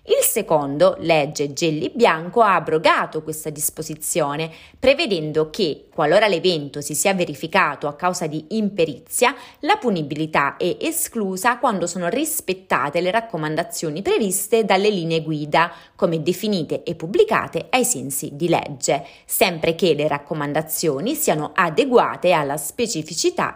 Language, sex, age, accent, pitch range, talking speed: Italian, female, 30-49, native, 155-205 Hz, 125 wpm